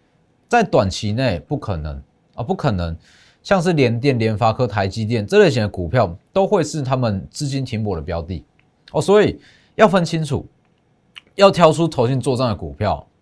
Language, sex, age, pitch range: Chinese, male, 30-49, 105-165 Hz